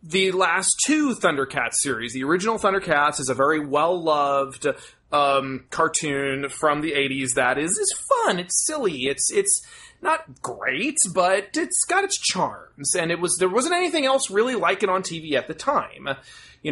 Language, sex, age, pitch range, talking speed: English, male, 30-49, 135-190 Hz, 170 wpm